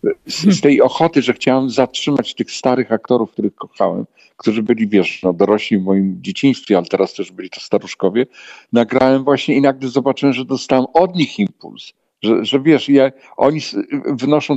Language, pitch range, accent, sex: Polish, 110-140 Hz, native, male